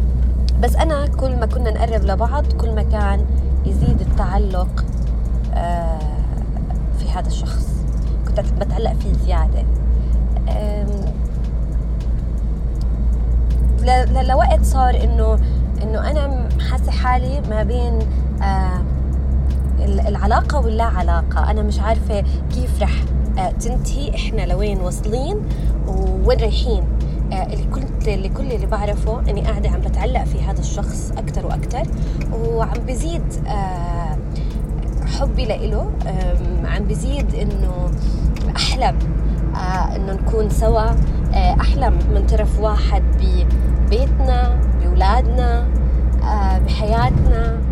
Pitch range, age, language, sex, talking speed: 65-70 Hz, 20-39, Arabic, female, 90 wpm